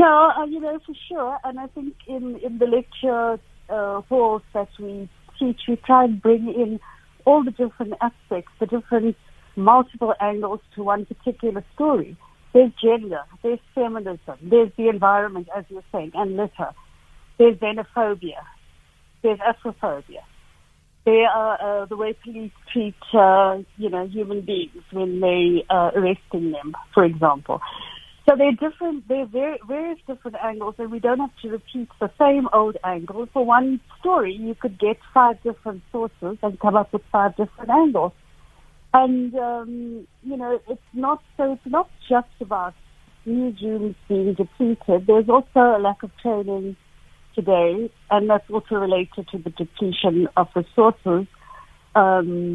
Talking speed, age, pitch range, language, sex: 155 wpm, 60-79, 195-245 Hz, English, female